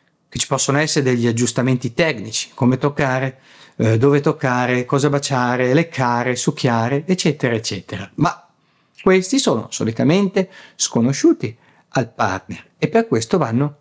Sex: male